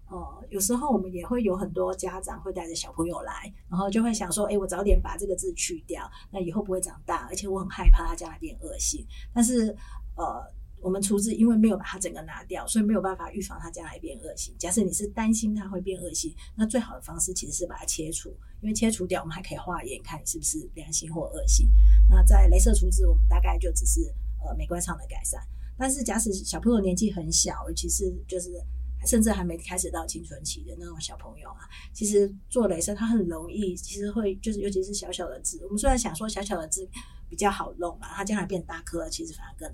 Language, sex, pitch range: Chinese, female, 175-210 Hz